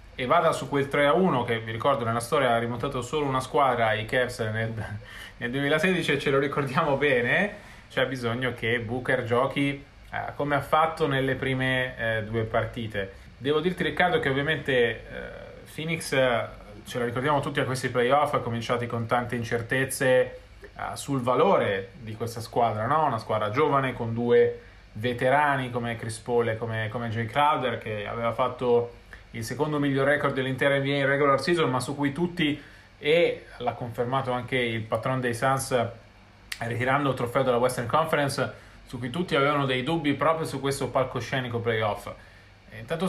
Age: 20-39